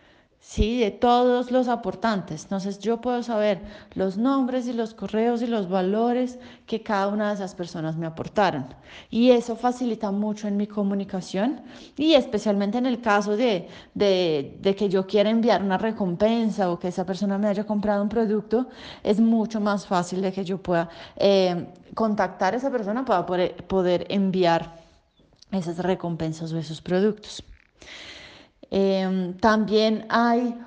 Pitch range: 190-235 Hz